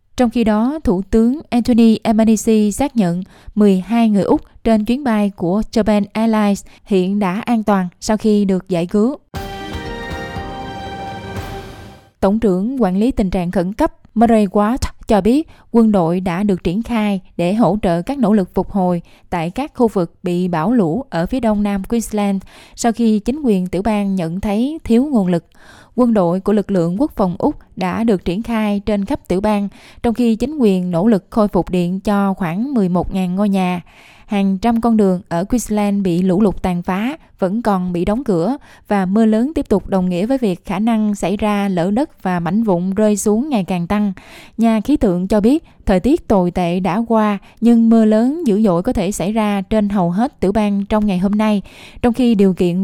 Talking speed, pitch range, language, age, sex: 200 wpm, 185-230 Hz, Vietnamese, 10-29, female